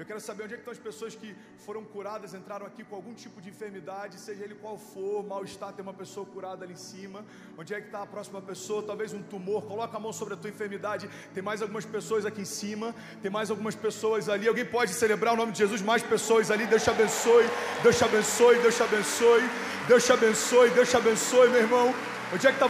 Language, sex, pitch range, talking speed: Portuguese, male, 205-240 Hz, 240 wpm